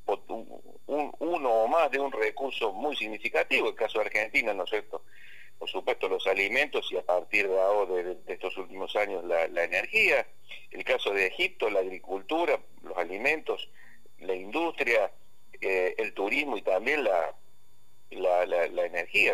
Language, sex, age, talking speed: Spanish, male, 50-69, 165 wpm